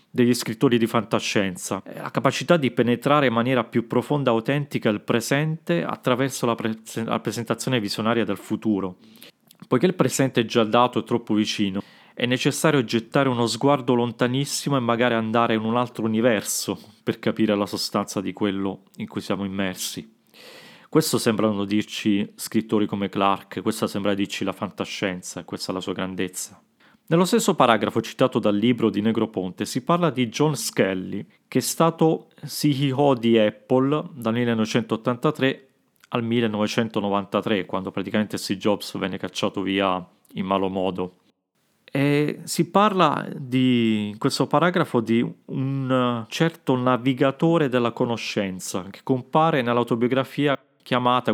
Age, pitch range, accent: 30-49, 105-135 Hz, native